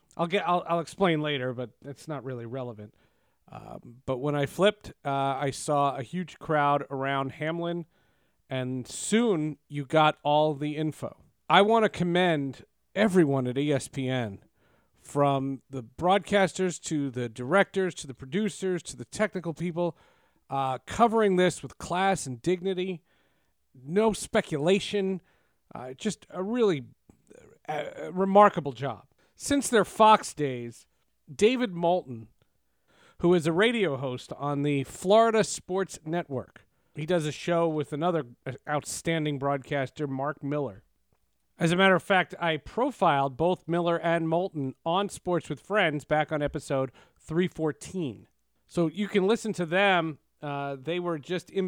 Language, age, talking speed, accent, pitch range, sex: English, 40-59, 145 wpm, American, 140-180 Hz, male